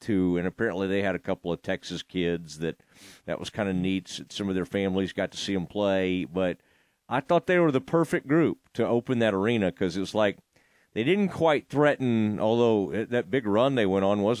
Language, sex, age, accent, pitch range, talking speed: English, male, 40-59, American, 105-150 Hz, 215 wpm